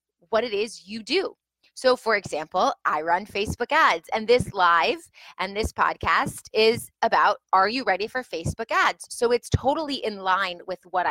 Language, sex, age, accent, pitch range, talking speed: English, female, 30-49, American, 175-250 Hz, 180 wpm